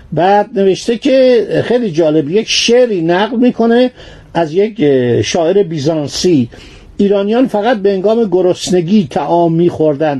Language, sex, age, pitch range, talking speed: Persian, male, 50-69, 165-210 Hz, 120 wpm